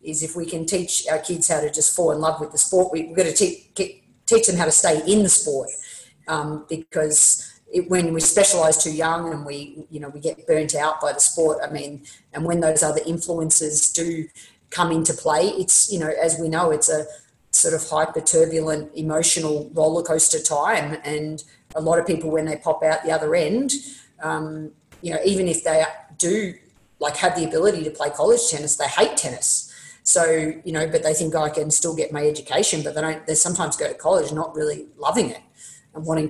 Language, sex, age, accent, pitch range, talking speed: English, female, 40-59, Australian, 155-170 Hz, 215 wpm